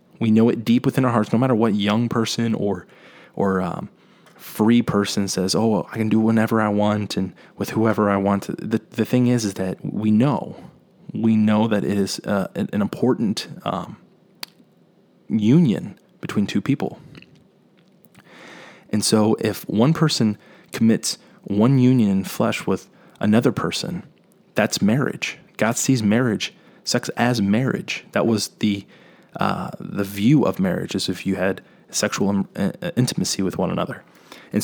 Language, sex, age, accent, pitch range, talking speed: English, male, 20-39, American, 100-115 Hz, 155 wpm